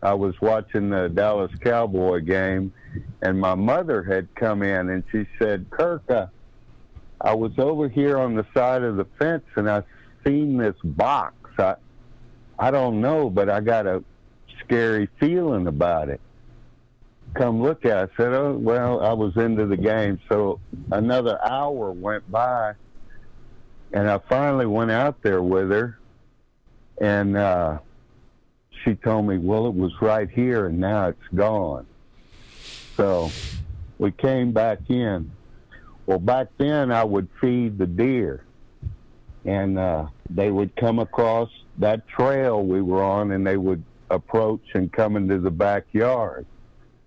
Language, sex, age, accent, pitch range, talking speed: English, male, 60-79, American, 95-120 Hz, 150 wpm